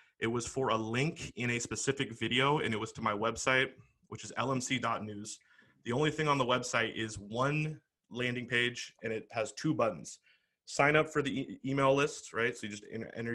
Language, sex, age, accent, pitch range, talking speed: English, male, 20-39, American, 115-135 Hz, 200 wpm